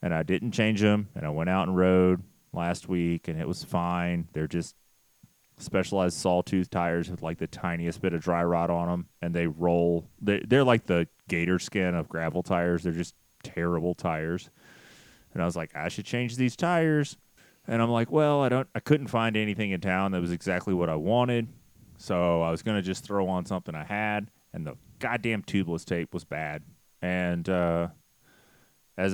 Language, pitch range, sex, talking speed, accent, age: English, 85-105 Hz, male, 195 wpm, American, 30-49